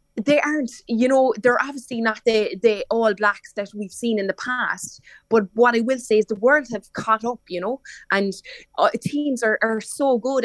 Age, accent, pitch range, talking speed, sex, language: 20-39, Irish, 205-230 Hz, 210 wpm, female, English